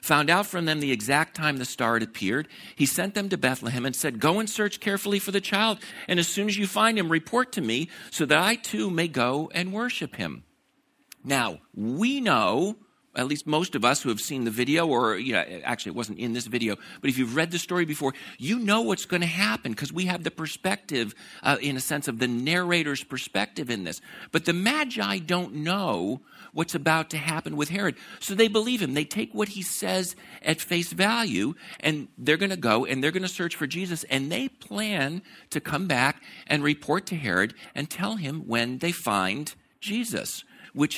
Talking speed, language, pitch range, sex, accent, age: 210 wpm, English, 125-185 Hz, male, American, 50-69